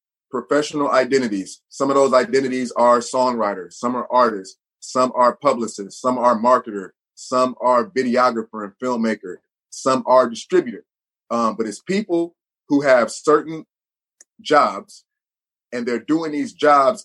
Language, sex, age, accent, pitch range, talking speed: English, male, 30-49, American, 120-150 Hz, 135 wpm